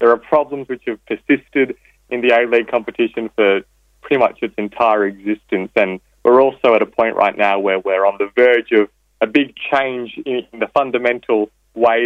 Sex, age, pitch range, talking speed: male, 20-39, 100-120 Hz, 185 wpm